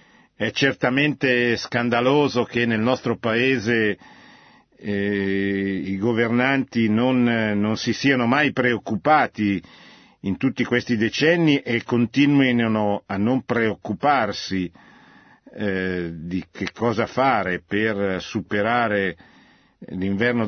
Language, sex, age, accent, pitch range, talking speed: Italian, male, 50-69, native, 100-120 Hz, 95 wpm